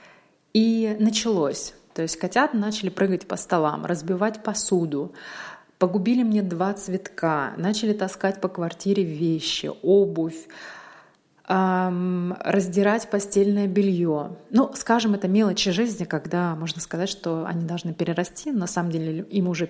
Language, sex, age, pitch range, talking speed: Russian, female, 30-49, 170-205 Hz, 130 wpm